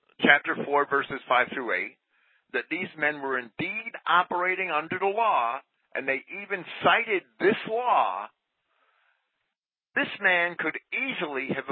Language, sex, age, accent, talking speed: English, male, 50-69, American, 135 wpm